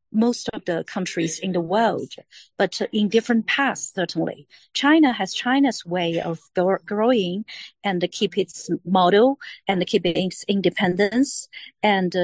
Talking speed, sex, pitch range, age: 145 wpm, female, 185-245 Hz, 40-59